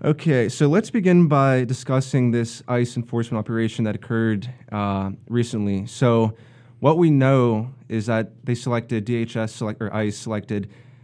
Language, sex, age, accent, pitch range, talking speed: English, male, 20-39, American, 110-130 Hz, 145 wpm